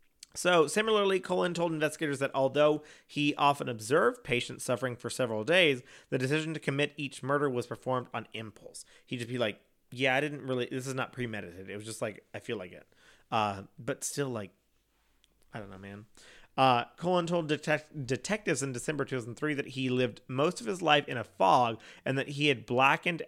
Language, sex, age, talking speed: English, male, 30-49, 195 wpm